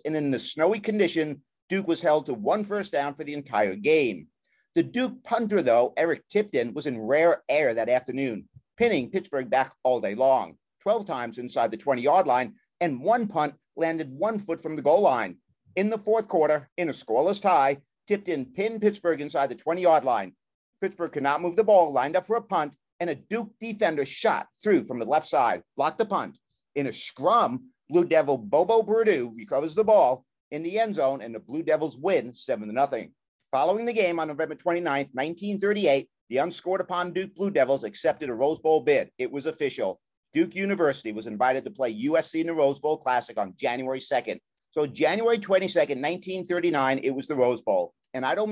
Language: English